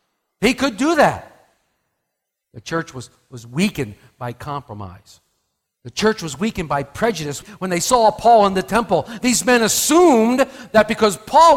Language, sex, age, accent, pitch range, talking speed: English, male, 50-69, American, 175-260 Hz, 155 wpm